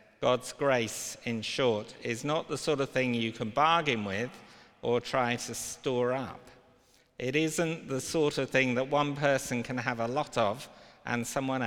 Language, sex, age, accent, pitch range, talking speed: English, male, 50-69, British, 115-140 Hz, 180 wpm